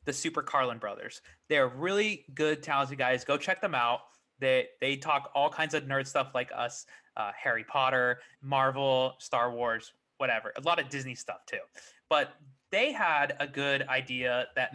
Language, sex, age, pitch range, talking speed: English, male, 20-39, 130-160 Hz, 175 wpm